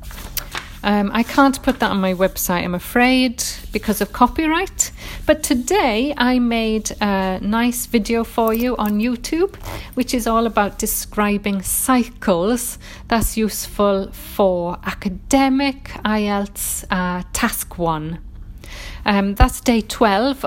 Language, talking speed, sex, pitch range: English, 125 wpm, female, 185-230 Hz